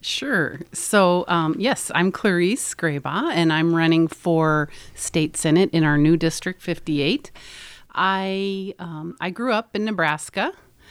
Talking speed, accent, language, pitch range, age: 140 wpm, American, English, 160-190 Hz, 40-59